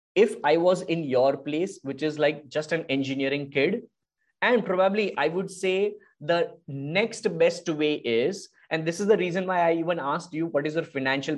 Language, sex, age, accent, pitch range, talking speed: English, male, 20-39, Indian, 145-205 Hz, 195 wpm